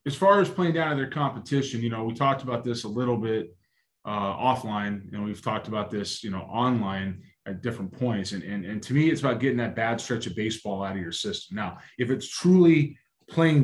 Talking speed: 240 wpm